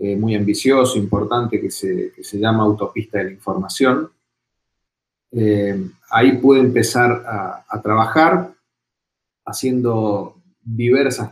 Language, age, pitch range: Spanish, 30-49, 105-125 Hz